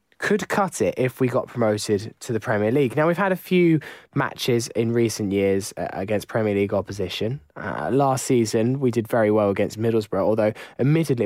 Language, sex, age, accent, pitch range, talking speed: English, male, 10-29, British, 105-150 Hz, 185 wpm